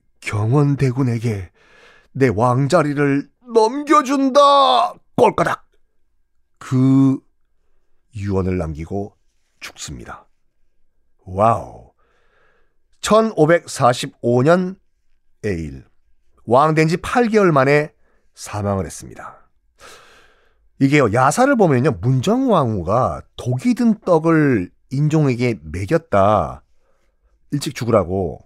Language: Korean